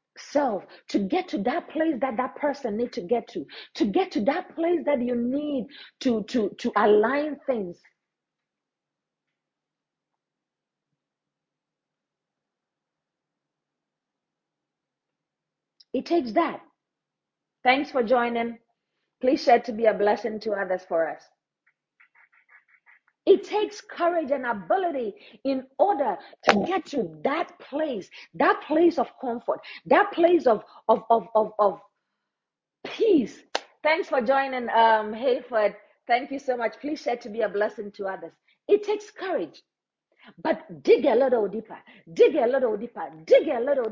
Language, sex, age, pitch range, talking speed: English, female, 40-59, 230-325 Hz, 135 wpm